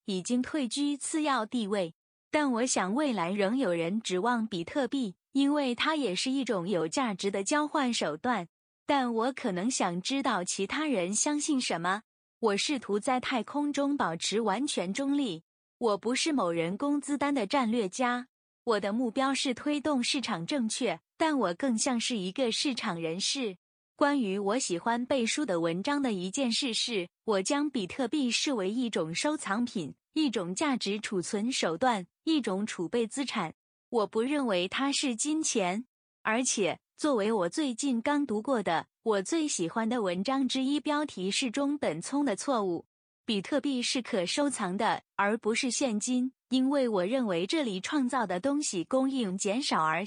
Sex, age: female, 20-39